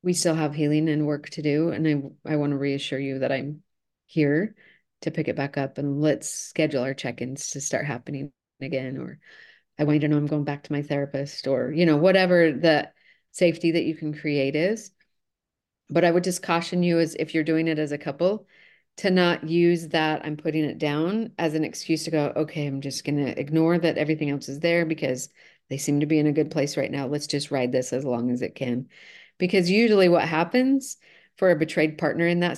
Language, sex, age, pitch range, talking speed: English, female, 30-49, 145-170 Hz, 225 wpm